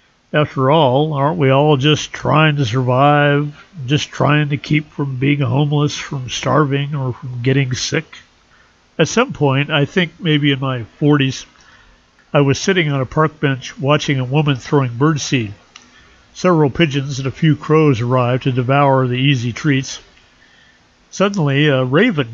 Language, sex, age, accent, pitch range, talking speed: English, male, 50-69, American, 130-155 Hz, 155 wpm